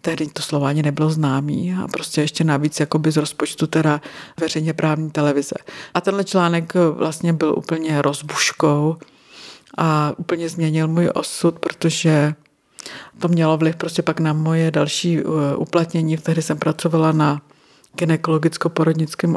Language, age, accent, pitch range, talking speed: Czech, 50-69, native, 155-180 Hz, 135 wpm